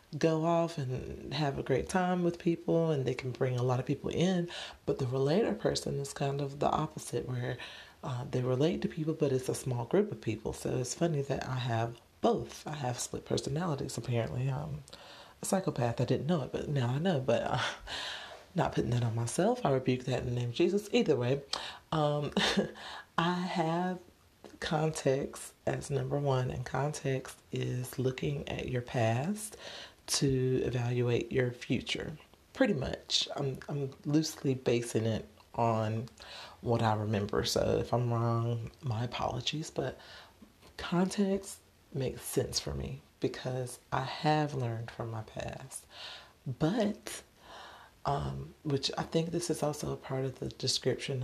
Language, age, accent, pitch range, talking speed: English, 30-49, American, 120-155 Hz, 165 wpm